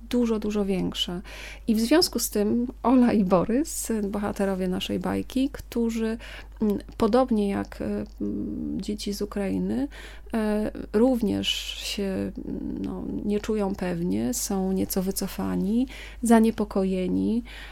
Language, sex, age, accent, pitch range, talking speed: Polish, female, 30-49, native, 190-230 Hz, 100 wpm